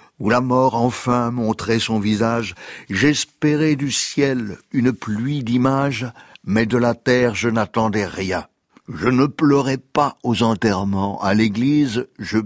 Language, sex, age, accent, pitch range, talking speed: French, male, 60-79, French, 105-125 Hz, 140 wpm